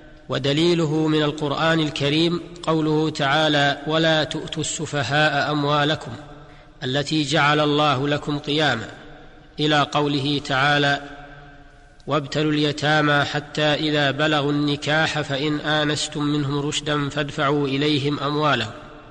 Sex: male